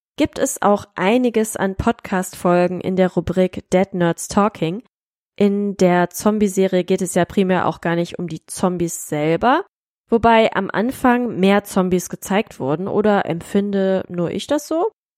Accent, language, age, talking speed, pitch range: German, German, 20-39, 155 wpm, 180-220 Hz